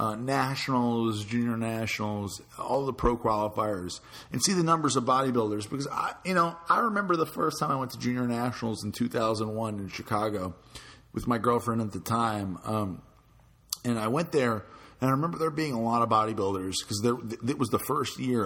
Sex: male